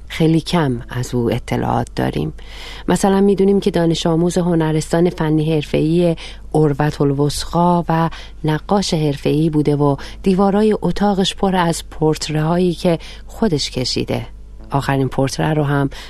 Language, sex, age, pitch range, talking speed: Persian, female, 40-59, 130-165 Hz, 125 wpm